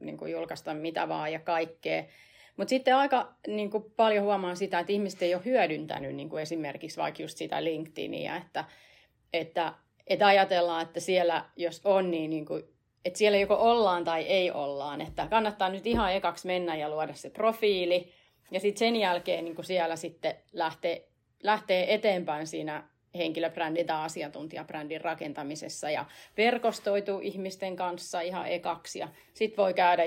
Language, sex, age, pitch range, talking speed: Finnish, female, 30-49, 165-195 Hz, 160 wpm